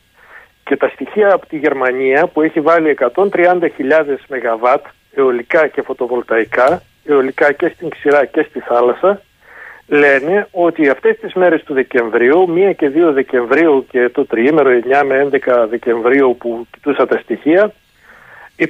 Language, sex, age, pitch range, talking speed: Greek, male, 40-59, 135-195 Hz, 140 wpm